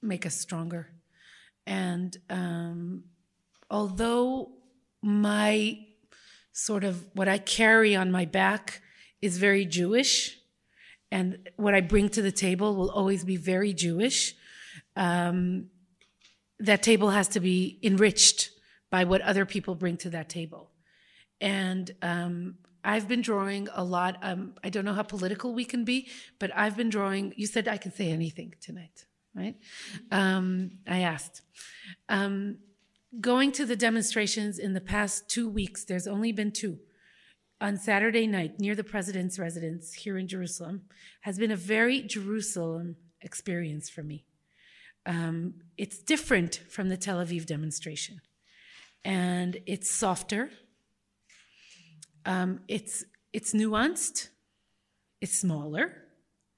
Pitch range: 180-215 Hz